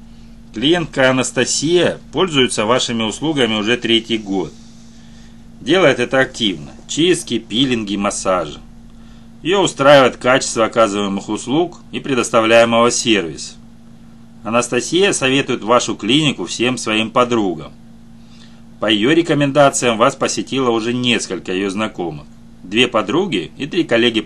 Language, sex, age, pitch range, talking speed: Russian, male, 40-59, 110-120 Hz, 105 wpm